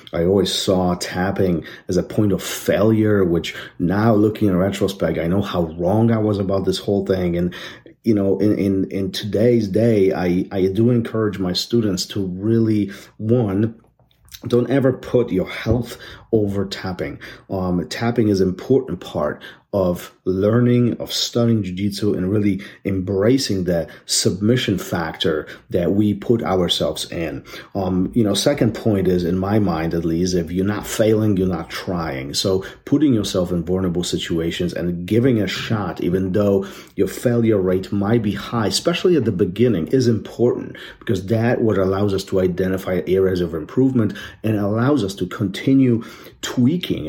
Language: English